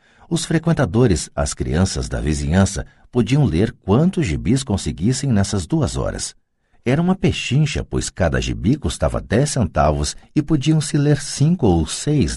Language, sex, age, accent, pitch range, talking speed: Portuguese, male, 50-69, Brazilian, 80-130 Hz, 145 wpm